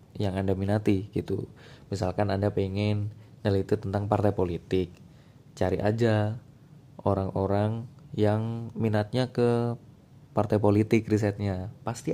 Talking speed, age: 100 wpm, 20-39